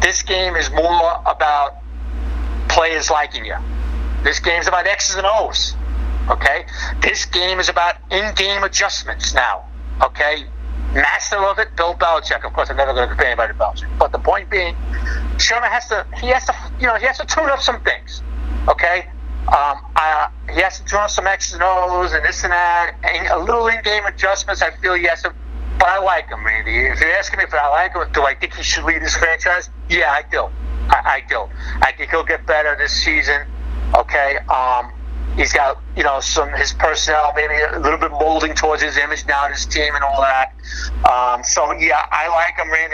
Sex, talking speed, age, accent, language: male, 205 wpm, 50-69, American, English